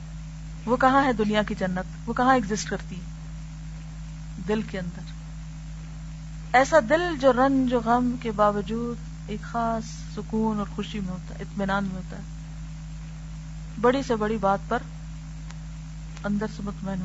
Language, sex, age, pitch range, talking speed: Urdu, female, 50-69, 155-215 Hz, 125 wpm